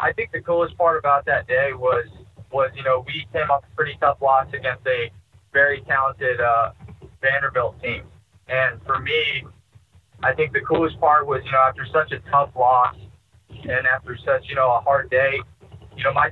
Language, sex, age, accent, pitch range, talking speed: English, male, 20-39, American, 115-140 Hz, 195 wpm